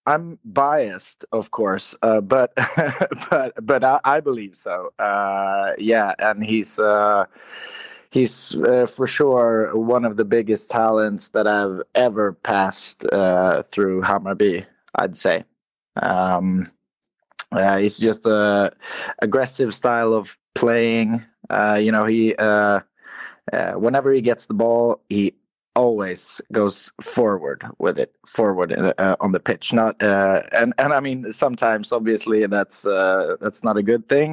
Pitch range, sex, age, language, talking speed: 100-120 Hz, male, 20-39, Danish, 145 wpm